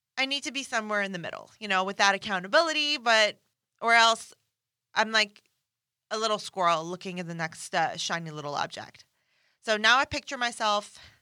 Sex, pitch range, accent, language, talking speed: female, 180-230 Hz, American, English, 175 wpm